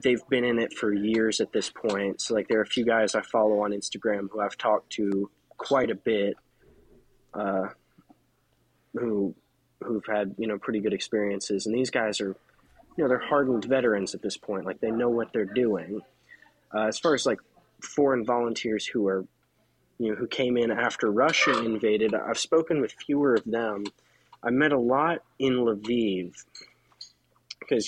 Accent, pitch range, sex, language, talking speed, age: American, 105-120 Hz, male, English, 180 wpm, 20-39